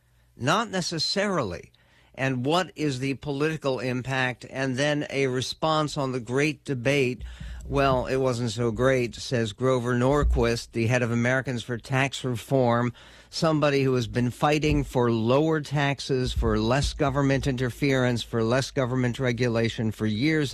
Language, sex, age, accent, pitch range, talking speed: English, male, 50-69, American, 120-145 Hz, 145 wpm